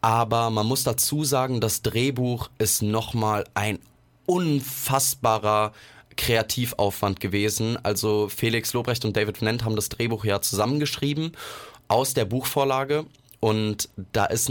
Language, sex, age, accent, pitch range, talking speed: German, male, 20-39, German, 110-130 Hz, 125 wpm